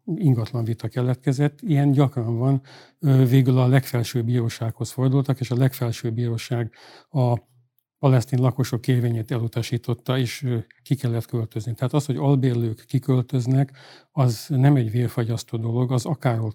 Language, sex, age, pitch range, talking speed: Hungarian, male, 50-69, 120-135 Hz, 130 wpm